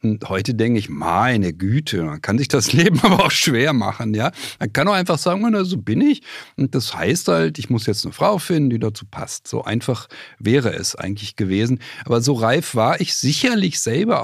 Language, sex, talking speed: German, male, 205 wpm